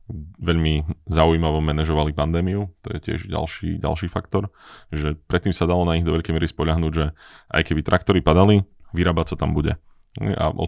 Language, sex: Slovak, male